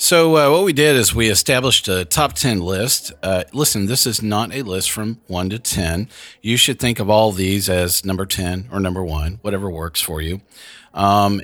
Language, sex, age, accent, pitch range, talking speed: English, male, 40-59, American, 90-125 Hz, 210 wpm